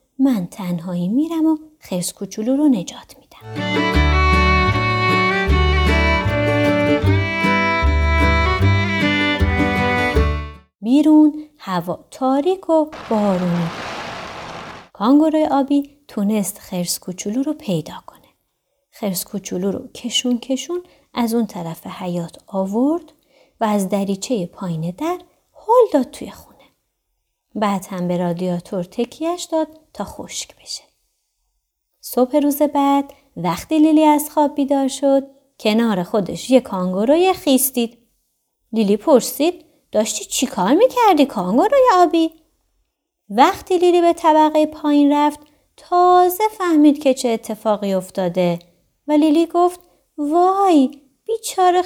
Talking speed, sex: 105 wpm, female